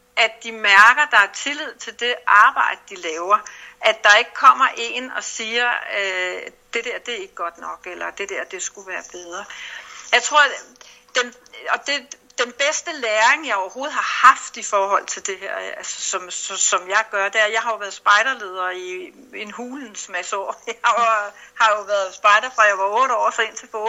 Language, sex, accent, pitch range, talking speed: Danish, female, native, 210-265 Hz, 215 wpm